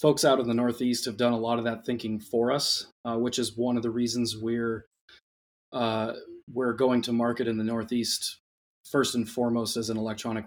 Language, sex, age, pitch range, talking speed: English, male, 20-39, 115-125 Hz, 205 wpm